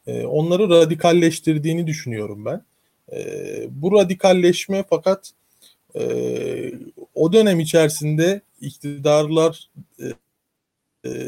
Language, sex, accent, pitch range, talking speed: Turkish, male, native, 140-185 Hz, 75 wpm